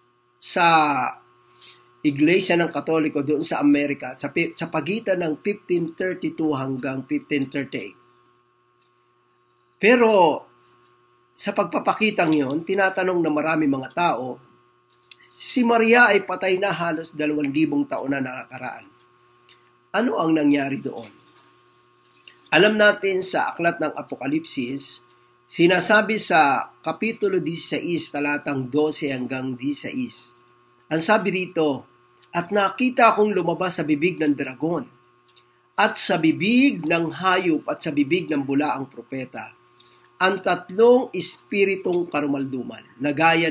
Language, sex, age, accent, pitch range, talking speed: Filipino, male, 50-69, native, 120-190 Hz, 110 wpm